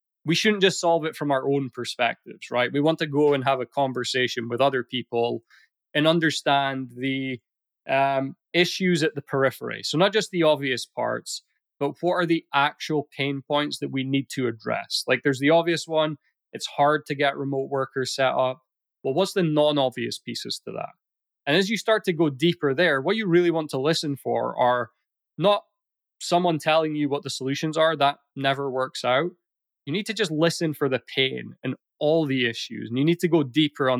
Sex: male